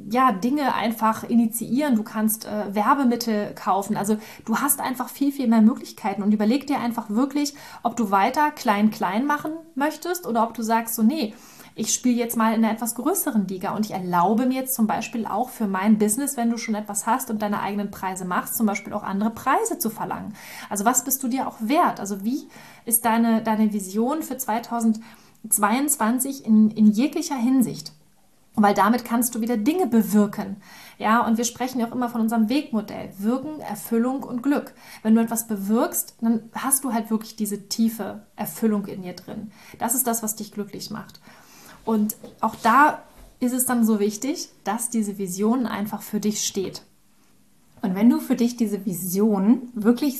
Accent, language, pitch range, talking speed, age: German, German, 210-245 Hz, 190 wpm, 30-49